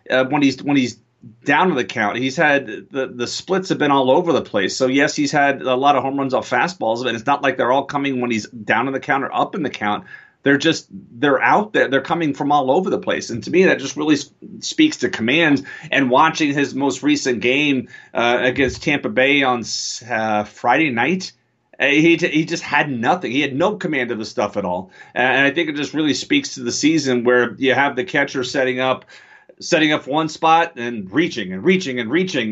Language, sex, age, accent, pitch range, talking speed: English, male, 30-49, American, 125-150 Hz, 230 wpm